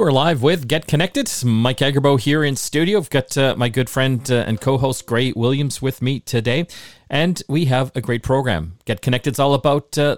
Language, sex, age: English, male, 40-59